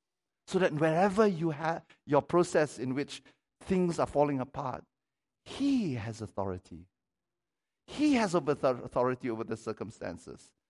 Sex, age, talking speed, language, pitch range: male, 50-69, 125 wpm, English, 155-220 Hz